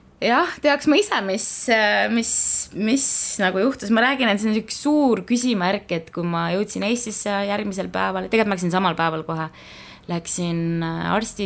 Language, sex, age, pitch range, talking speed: English, female, 20-39, 170-220 Hz, 155 wpm